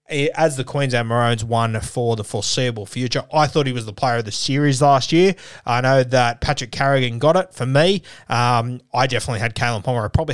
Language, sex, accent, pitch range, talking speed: English, male, Australian, 115-140 Hz, 215 wpm